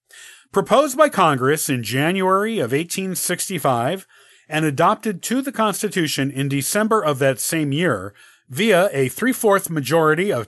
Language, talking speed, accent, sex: English, 130 wpm, American, male